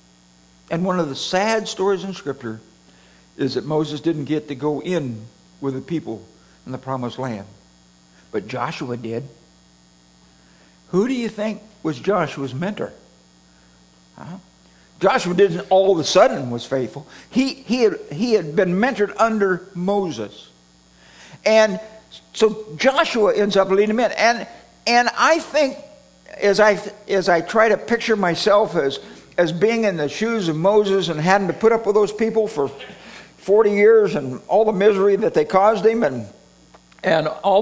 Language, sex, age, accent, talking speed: English, male, 60-79, American, 160 wpm